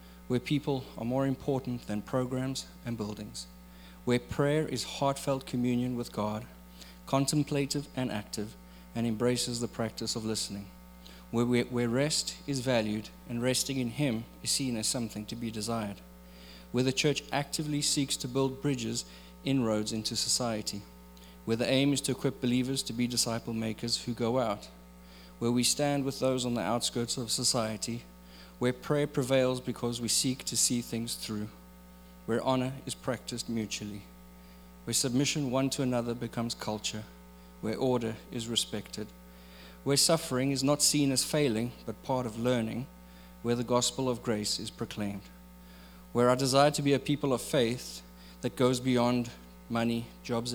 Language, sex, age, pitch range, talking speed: English, male, 30-49, 100-130 Hz, 160 wpm